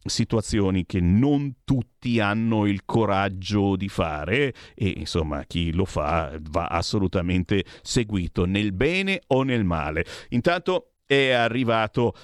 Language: Italian